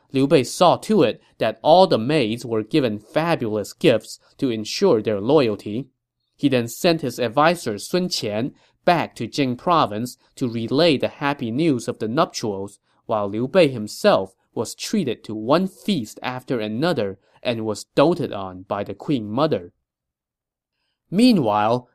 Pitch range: 110-155 Hz